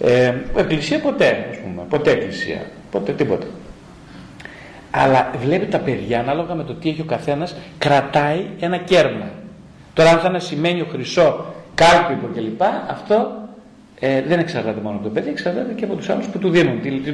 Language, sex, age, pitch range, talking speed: Greek, male, 40-59, 125-180 Hz, 175 wpm